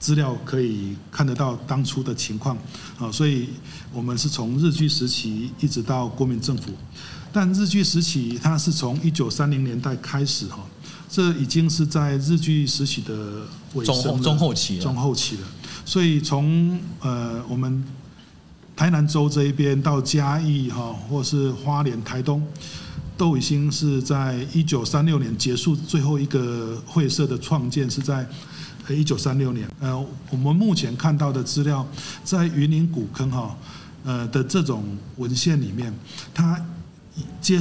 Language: Chinese